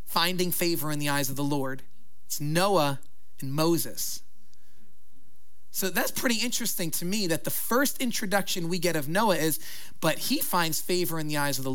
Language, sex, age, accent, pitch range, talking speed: English, male, 30-49, American, 140-200 Hz, 185 wpm